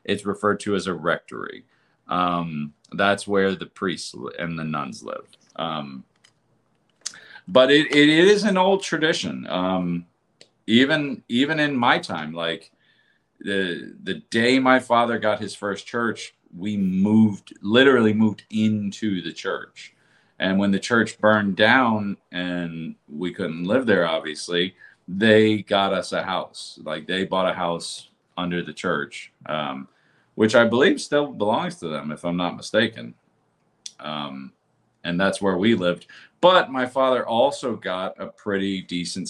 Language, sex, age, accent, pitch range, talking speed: English, male, 40-59, American, 85-115 Hz, 150 wpm